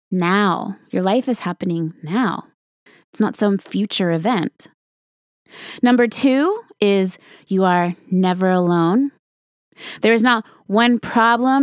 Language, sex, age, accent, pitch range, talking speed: English, female, 20-39, American, 170-240 Hz, 120 wpm